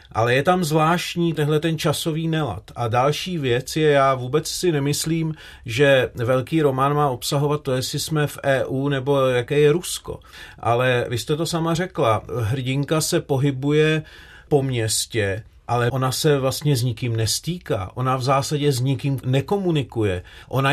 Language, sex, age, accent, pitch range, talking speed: Czech, male, 40-59, native, 120-155 Hz, 155 wpm